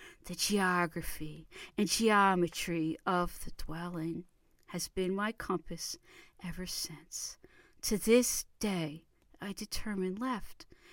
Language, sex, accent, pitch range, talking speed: English, female, American, 175-215 Hz, 105 wpm